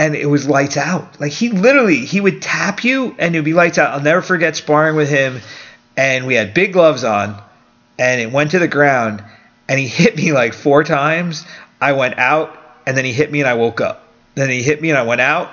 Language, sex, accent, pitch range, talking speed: English, male, American, 125-155 Hz, 240 wpm